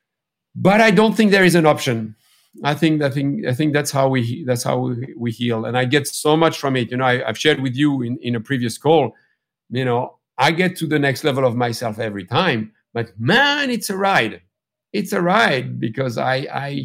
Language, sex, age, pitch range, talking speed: English, male, 50-69, 125-155 Hz, 225 wpm